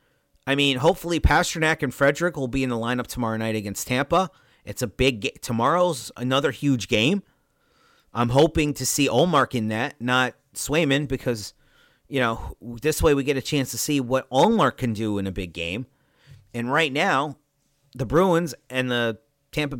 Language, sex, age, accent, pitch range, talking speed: English, male, 40-59, American, 120-150 Hz, 180 wpm